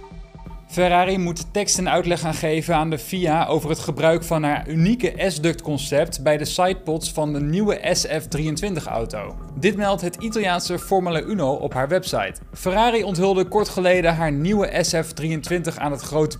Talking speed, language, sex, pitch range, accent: 165 wpm, Dutch, male, 150-185 Hz, Dutch